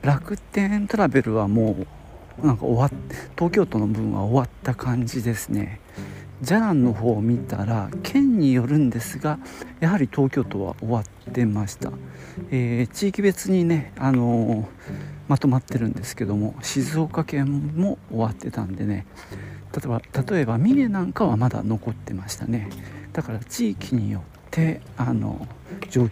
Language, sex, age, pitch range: Japanese, male, 50-69, 110-155 Hz